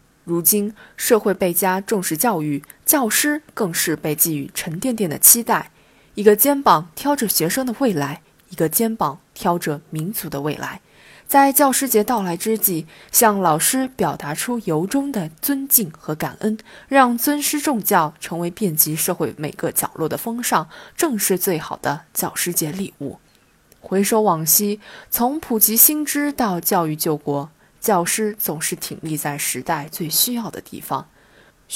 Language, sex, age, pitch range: Chinese, female, 20-39, 165-240 Hz